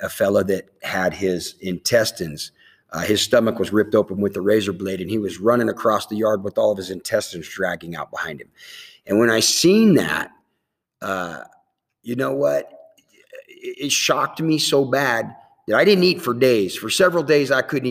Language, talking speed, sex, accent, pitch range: English, 195 wpm, male, American, 105-165 Hz